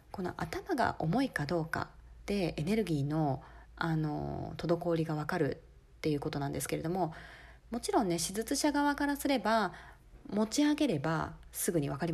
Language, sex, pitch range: Japanese, female, 170-245 Hz